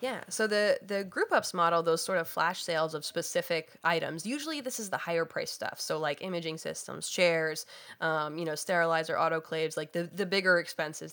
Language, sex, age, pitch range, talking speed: English, female, 20-39, 160-190 Hz, 200 wpm